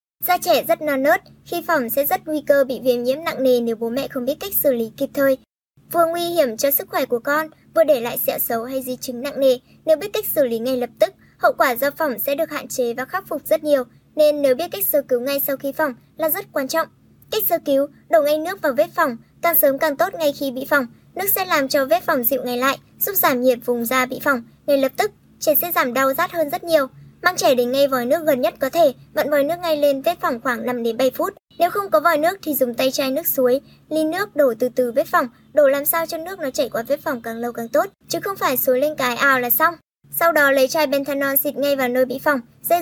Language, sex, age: Vietnamese, male, 10-29